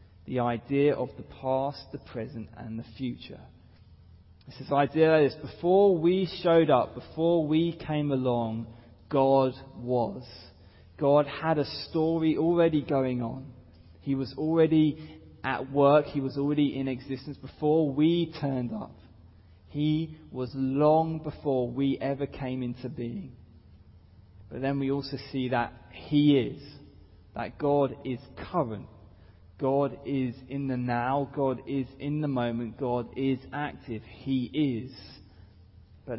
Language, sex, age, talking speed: English, male, 20-39, 135 wpm